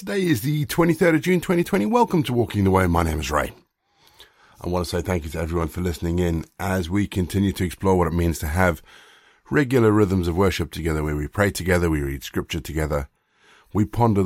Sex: male